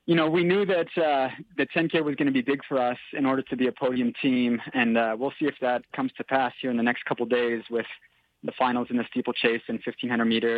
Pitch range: 115-135 Hz